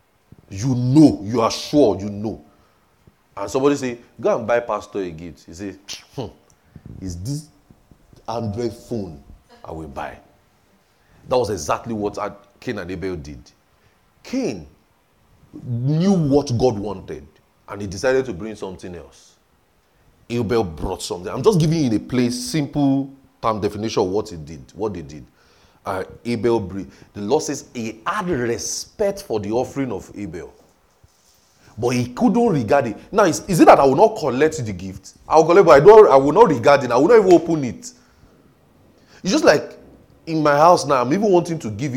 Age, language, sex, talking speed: 40-59, English, male, 175 wpm